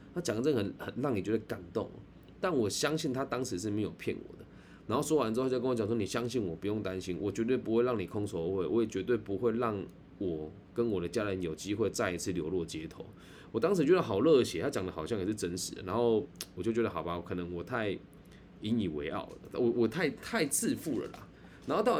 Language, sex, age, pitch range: Chinese, male, 20-39, 100-125 Hz